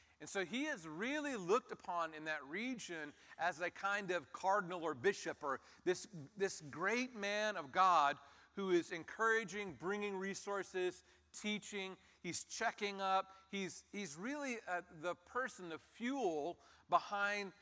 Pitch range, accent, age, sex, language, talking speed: 130-200 Hz, American, 40-59, male, English, 140 wpm